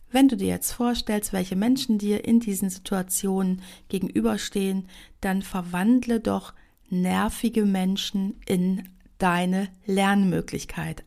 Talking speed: 110 wpm